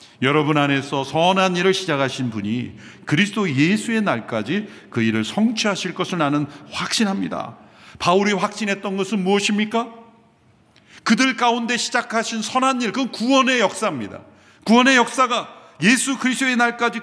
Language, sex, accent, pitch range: Korean, male, native, 145-230 Hz